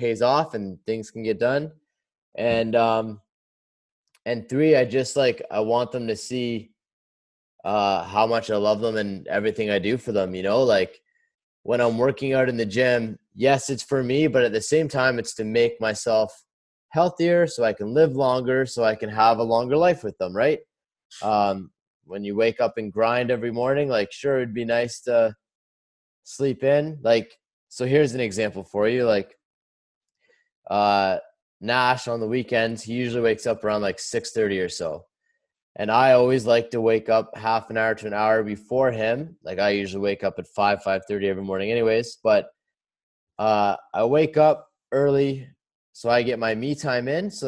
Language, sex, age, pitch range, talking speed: English, male, 20-39, 110-130 Hz, 190 wpm